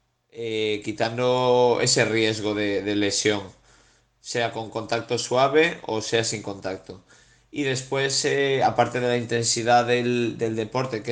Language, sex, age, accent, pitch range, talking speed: Spanish, male, 30-49, Spanish, 110-125 Hz, 140 wpm